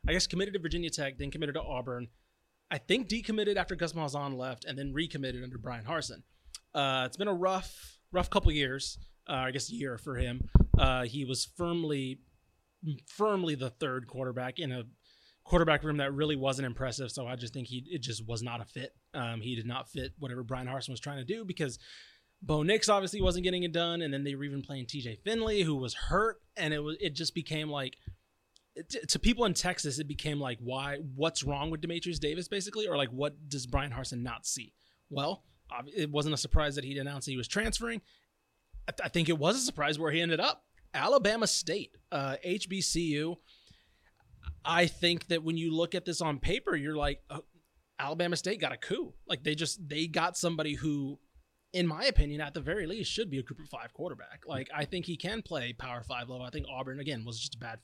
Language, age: English, 30-49